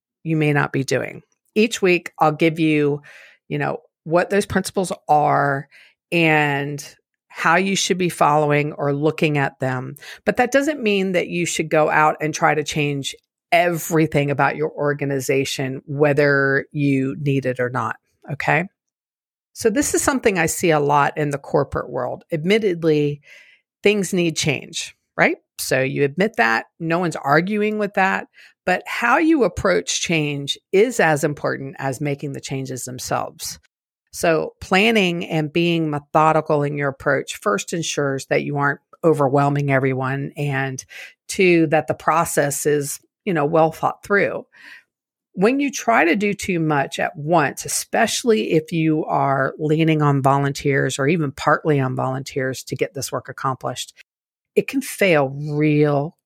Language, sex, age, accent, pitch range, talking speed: English, female, 50-69, American, 140-175 Hz, 155 wpm